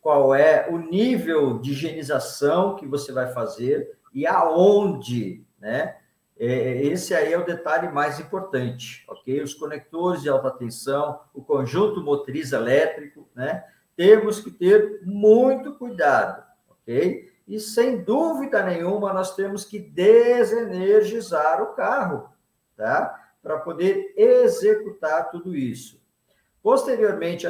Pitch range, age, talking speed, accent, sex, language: 150-225 Hz, 50-69, 120 wpm, Brazilian, male, Portuguese